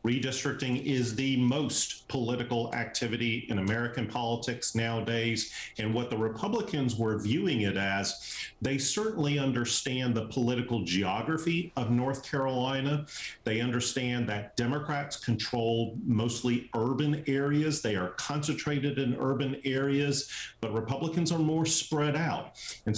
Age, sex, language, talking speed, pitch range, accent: 40-59, male, English, 125 wpm, 110-145 Hz, American